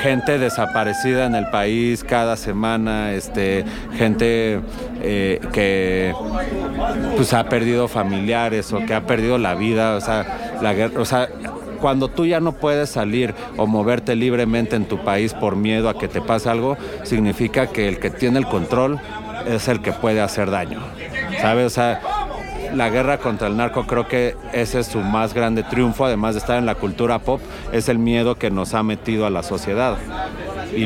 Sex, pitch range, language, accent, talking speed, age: male, 105-120 Hz, Spanish, Mexican, 180 wpm, 40-59